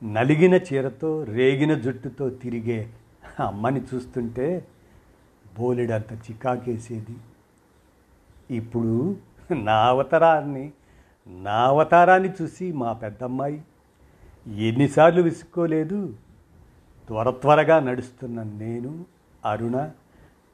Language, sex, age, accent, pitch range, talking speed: Telugu, male, 50-69, native, 115-160 Hz, 60 wpm